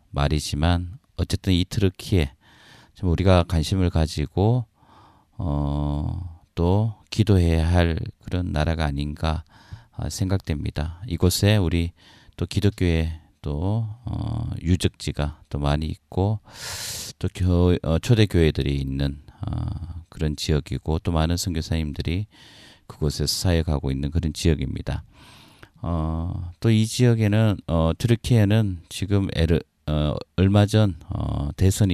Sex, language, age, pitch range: male, Korean, 40-59, 80-105 Hz